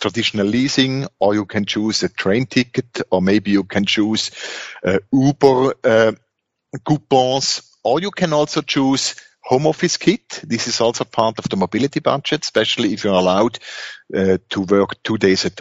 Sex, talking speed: male, 170 wpm